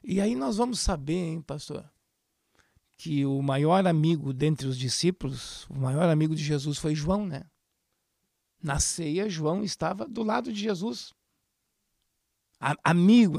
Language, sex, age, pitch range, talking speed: Portuguese, male, 60-79, 160-215 Hz, 140 wpm